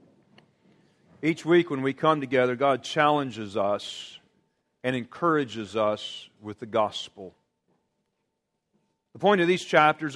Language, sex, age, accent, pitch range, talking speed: English, male, 40-59, American, 135-200 Hz, 120 wpm